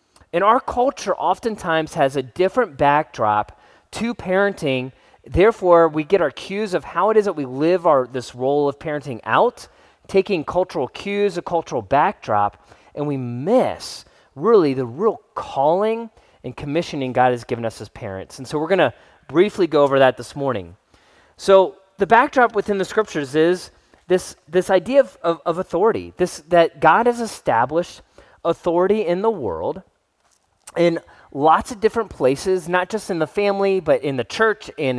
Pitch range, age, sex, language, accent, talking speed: 140-195 Hz, 30-49, male, English, American, 165 wpm